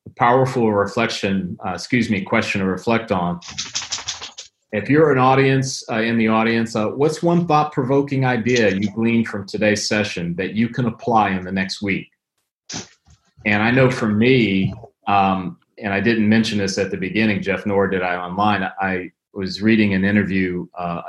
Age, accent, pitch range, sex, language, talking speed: 30-49, American, 95-110 Hz, male, English, 175 wpm